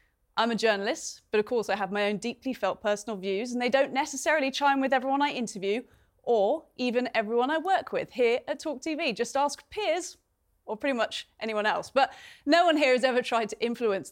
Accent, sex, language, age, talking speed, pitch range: British, female, English, 30-49, 210 wpm, 210-265 Hz